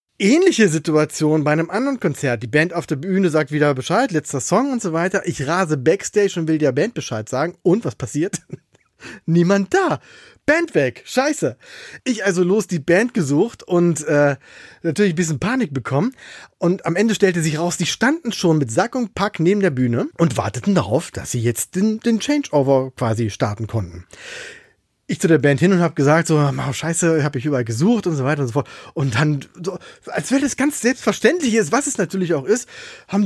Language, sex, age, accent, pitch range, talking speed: German, male, 30-49, German, 145-210 Hz, 200 wpm